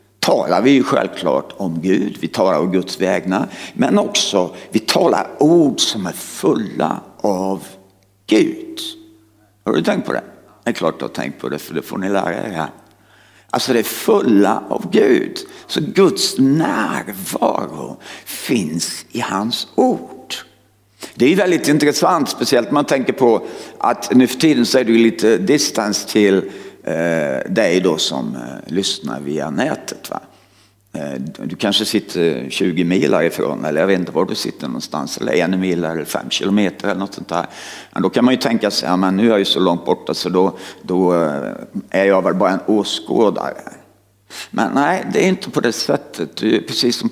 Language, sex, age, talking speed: Swedish, male, 60-79, 175 wpm